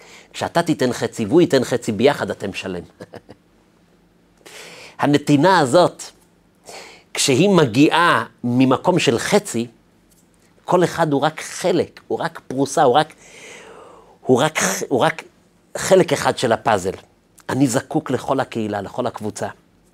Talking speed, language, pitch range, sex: 120 wpm, Hebrew, 110-150 Hz, male